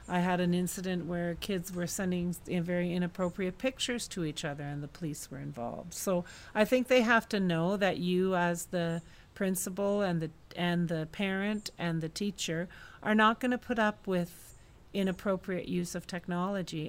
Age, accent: 40-59, American